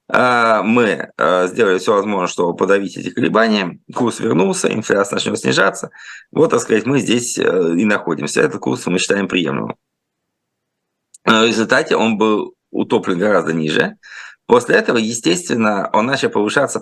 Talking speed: 135 wpm